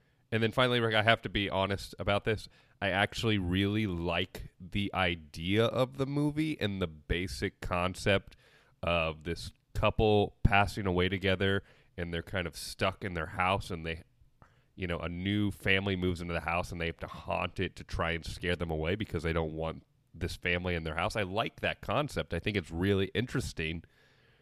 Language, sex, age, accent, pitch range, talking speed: English, male, 30-49, American, 85-115 Hz, 195 wpm